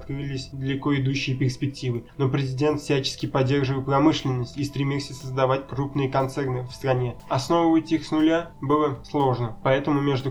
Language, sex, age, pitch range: Russian, male, 20-39, 130-145 Hz